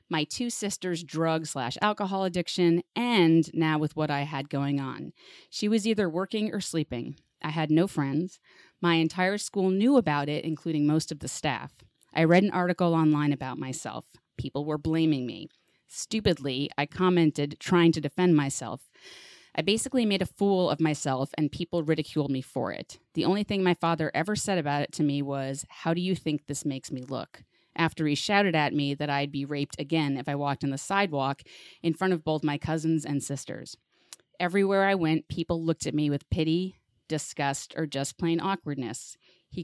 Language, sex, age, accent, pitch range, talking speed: English, female, 30-49, American, 145-180 Hz, 190 wpm